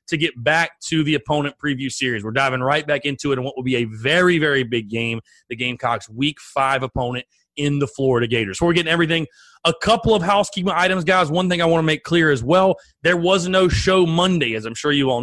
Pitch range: 130-165 Hz